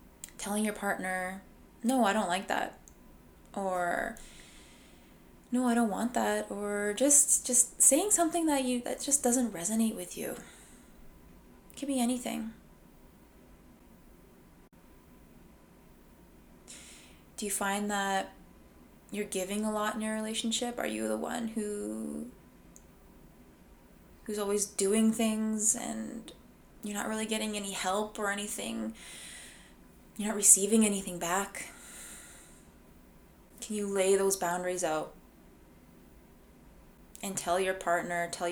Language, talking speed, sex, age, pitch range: English, 120 wpm, female, 20-39, 185-225 Hz